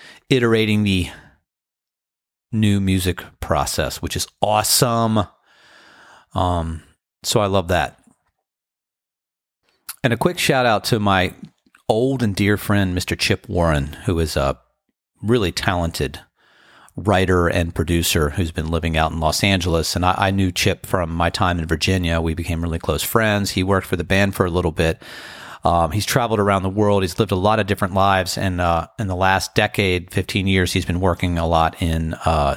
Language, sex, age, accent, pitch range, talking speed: English, male, 40-59, American, 85-105 Hz, 175 wpm